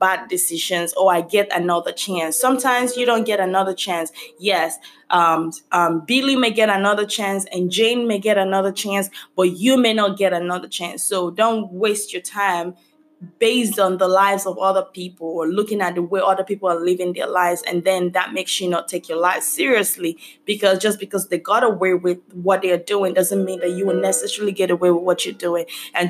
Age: 20-39